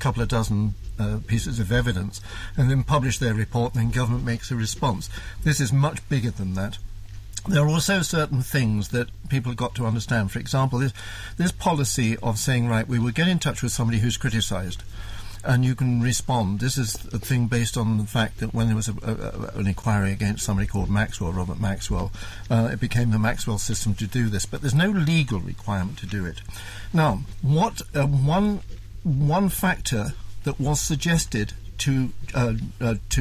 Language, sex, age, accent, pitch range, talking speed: English, male, 60-79, British, 100-130 Hz, 185 wpm